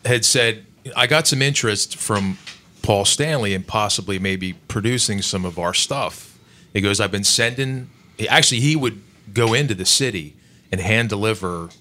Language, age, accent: English, 30-49, American